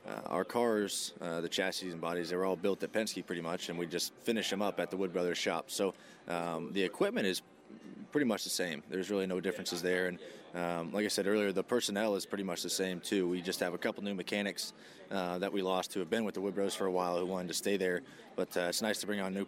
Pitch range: 90-105 Hz